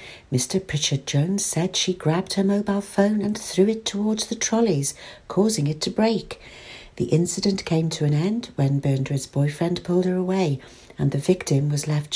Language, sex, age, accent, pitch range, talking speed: English, female, 60-79, British, 145-195 Hz, 180 wpm